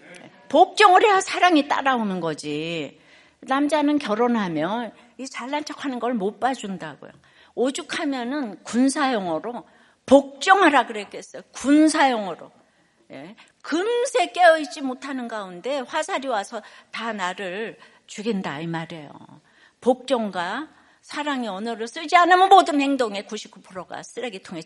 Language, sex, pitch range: Korean, female, 215-295 Hz